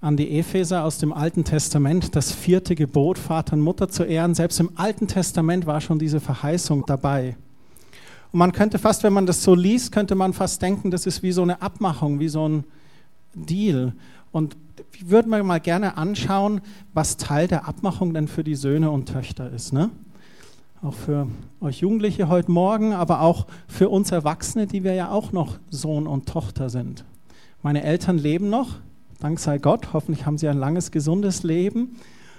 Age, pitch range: 40-59, 150-190 Hz